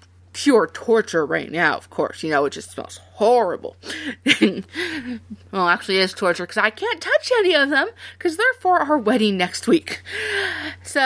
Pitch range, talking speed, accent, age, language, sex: 165-260 Hz, 175 wpm, American, 30-49, English, female